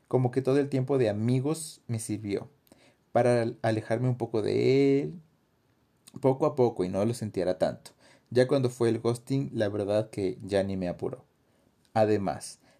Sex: male